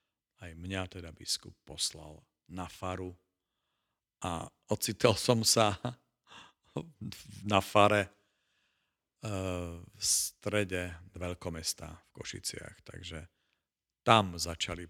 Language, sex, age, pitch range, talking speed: Slovak, male, 50-69, 85-100 Hz, 85 wpm